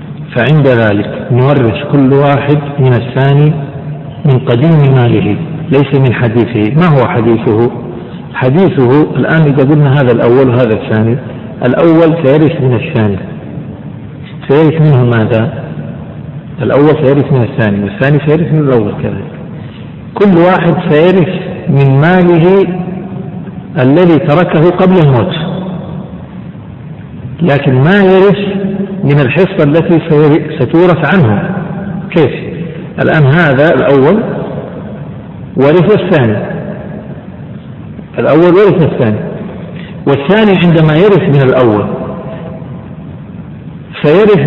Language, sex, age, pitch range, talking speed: Arabic, male, 50-69, 135-180 Hz, 100 wpm